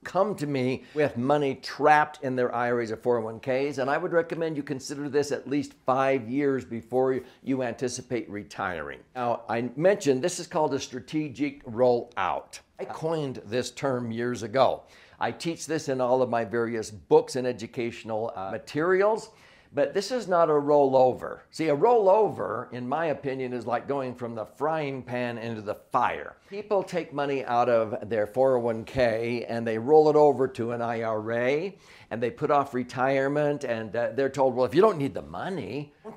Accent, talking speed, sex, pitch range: American, 180 wpm, male, 120-155 Hz